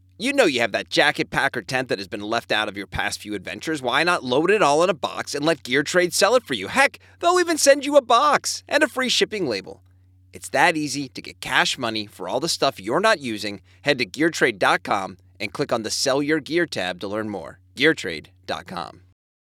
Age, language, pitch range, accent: 30-49, English, 100-160 Hz, American